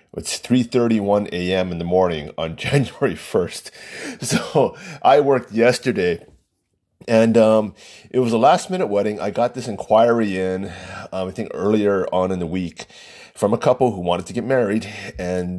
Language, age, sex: English, 30-49, male